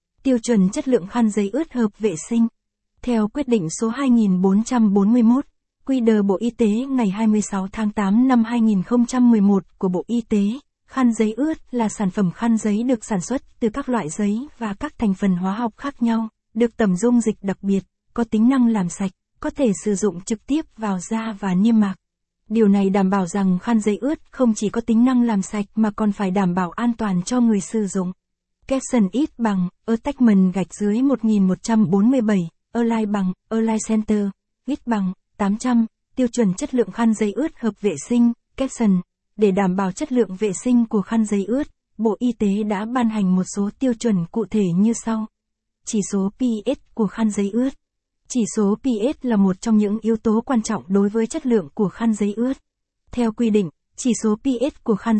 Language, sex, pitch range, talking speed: Vietnamese, female, 200-240 Hz, 200 wpm